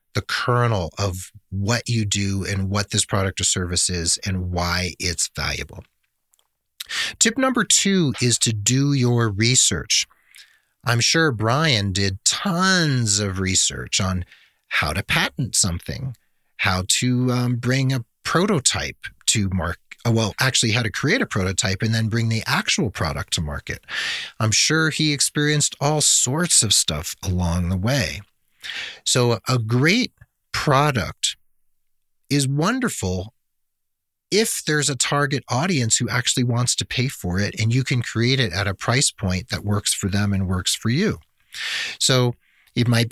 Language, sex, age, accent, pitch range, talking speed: English, male, 40-59, American, 100-130 Hz, 150 wpm